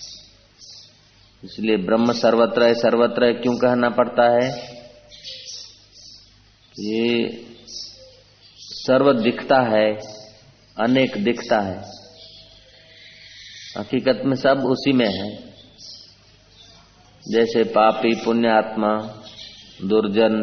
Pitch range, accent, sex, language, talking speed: 105-125 Hz, native, male, Hindi, 80 wpm